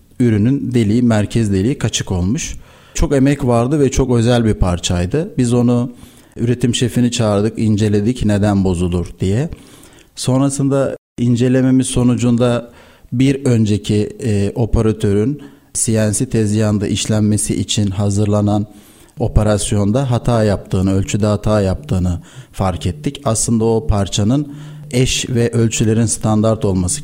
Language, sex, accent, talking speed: Turkish, male, native, 115 wpm